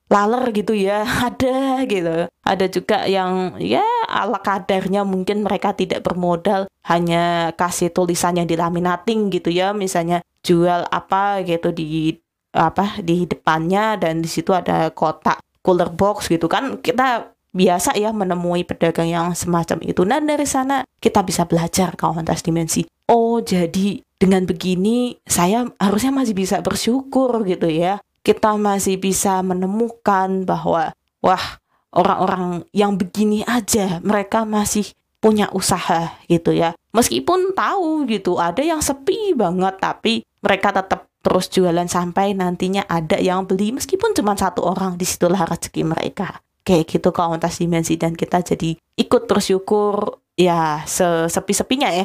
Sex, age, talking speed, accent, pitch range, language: female, 20-39, 135 wpm, native, 175-210 Hz, Indonesian